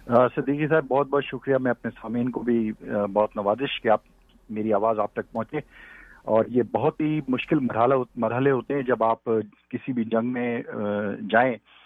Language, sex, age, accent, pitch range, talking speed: English, male, 50-69, Indian, 120-160 Hz, 165 wpm